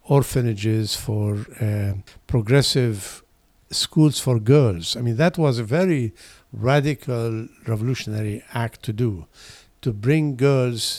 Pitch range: 110-140 Hz